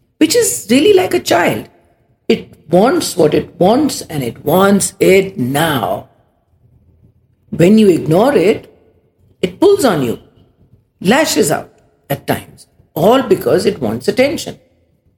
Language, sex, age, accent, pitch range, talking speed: English, female, 50-69, Indian, 145-225 Hz, 130 wpm